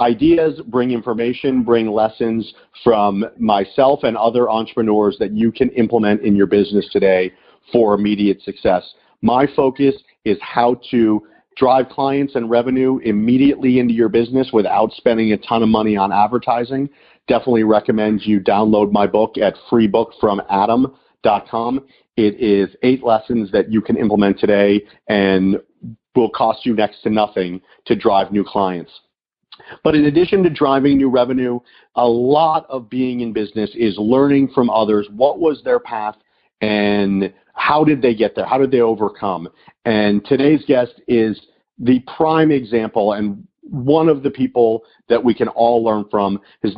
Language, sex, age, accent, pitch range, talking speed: English, male, 40-59, American, 105-130 Hz, 155 wpm